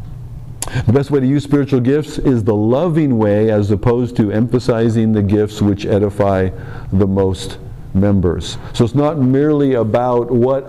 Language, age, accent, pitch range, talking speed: English, 50-69, American, 100-130 Hz, 155 wpm